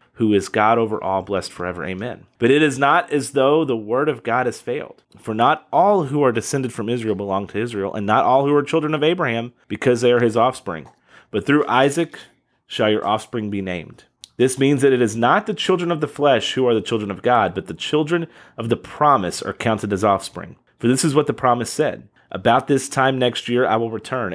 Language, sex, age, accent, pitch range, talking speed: English, male, 30-49, American, 105-140 Hz, 230 wpm